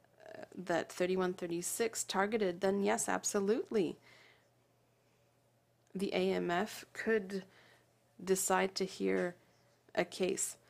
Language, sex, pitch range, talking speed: English, female, 180-205 Hz, 80 wpm